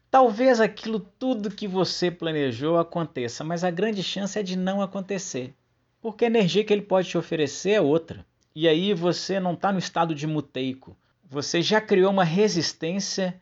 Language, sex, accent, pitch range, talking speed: Portuguese, male, Brazilian, 150-200 Hz, 175 wpm